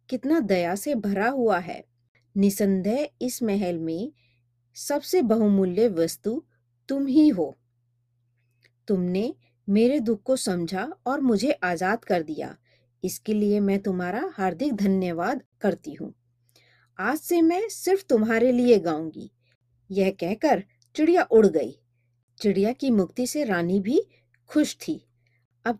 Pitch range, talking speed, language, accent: 155-250 Hz, 130 wpm, Hindi, native